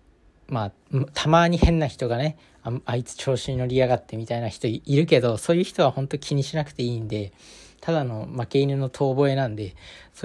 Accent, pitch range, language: native, 110-140 Hz, Japanese